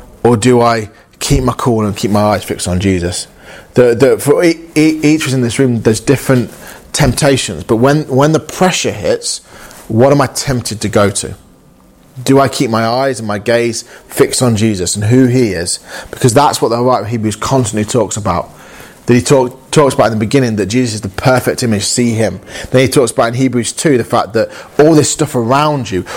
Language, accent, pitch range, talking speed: English, British, 110-135 Hz, 210 wpm